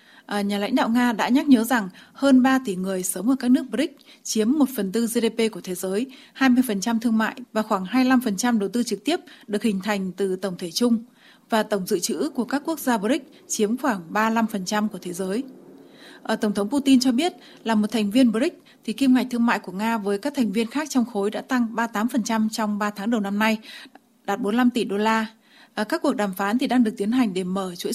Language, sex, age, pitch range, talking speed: Vietnamese, female, 20-39, 210-260 Hz, 235 wpm